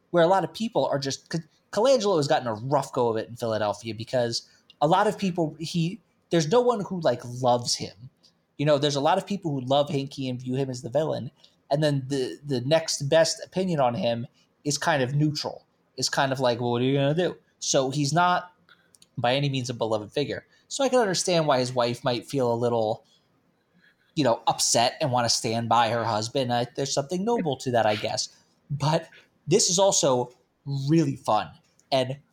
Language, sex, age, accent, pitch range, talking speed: English, male, 20-39, American, 130-175 Hz, 215 wpm